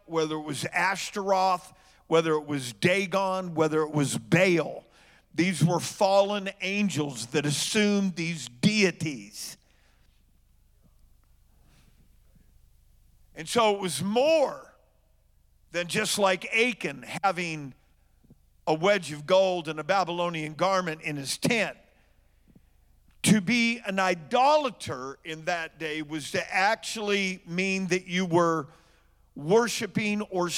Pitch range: 145-210 Hz